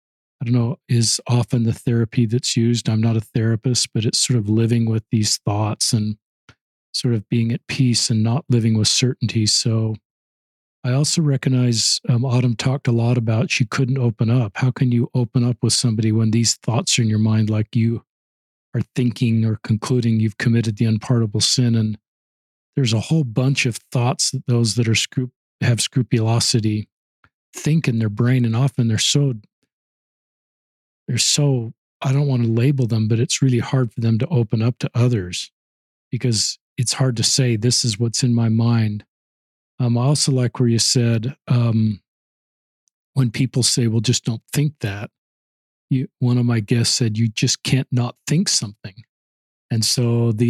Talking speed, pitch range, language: 180 wpm, 115-130 Hz, English